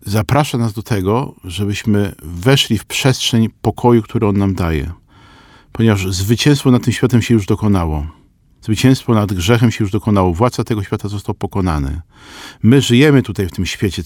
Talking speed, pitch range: 160 wpm, 100-130 Hz